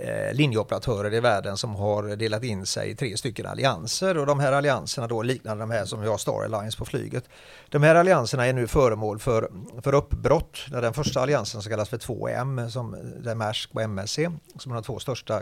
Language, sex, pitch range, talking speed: Swedish, male, 110-145 Hz, 200 wpm